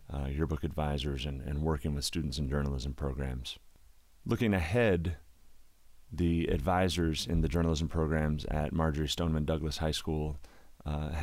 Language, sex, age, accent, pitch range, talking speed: English, male, 30-49, American, 75-85 Hz, 145 wpm